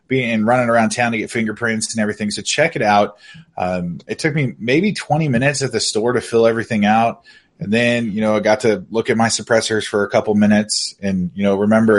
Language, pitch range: English, 100-125 Hz